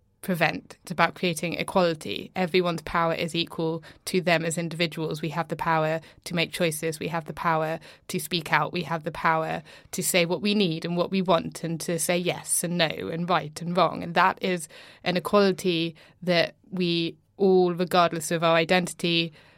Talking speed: 190 wpm